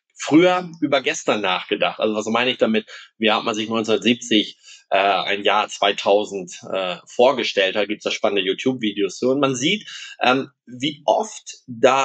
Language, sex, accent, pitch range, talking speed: German, male, German, 110-170 Hz, 170 wpm